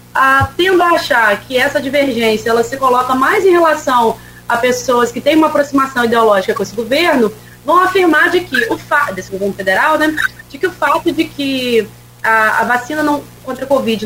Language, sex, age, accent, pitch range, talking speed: Portuguese, female, 30-49, Brazilian, 230-315 Hz, 190 wpm